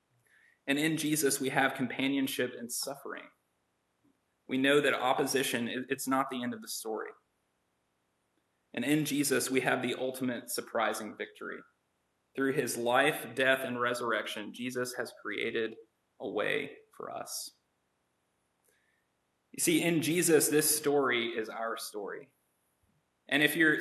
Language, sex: English, male